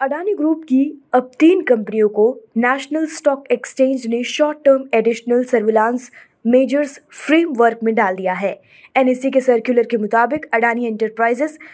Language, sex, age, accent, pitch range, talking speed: Hindi, female, 20-39, native, 240-285 Hz, 145 wpm